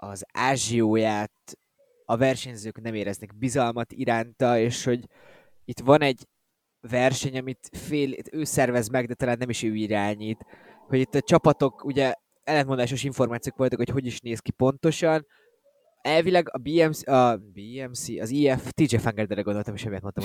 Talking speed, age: 155 wpm, 20-39